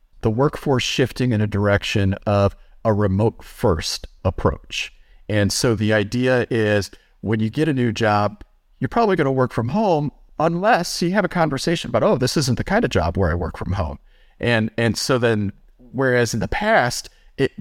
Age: 40-59